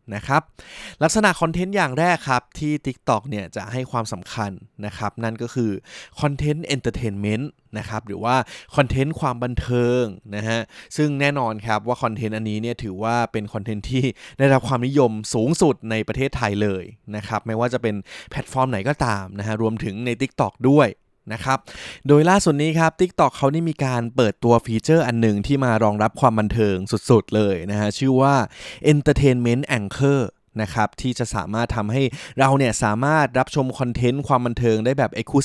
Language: Thai